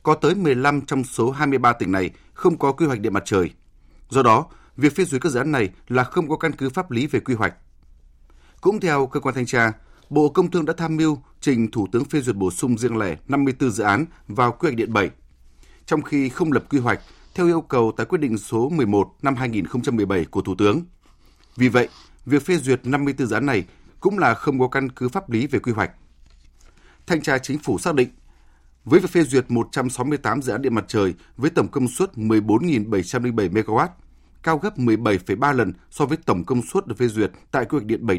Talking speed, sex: 220 wpm, male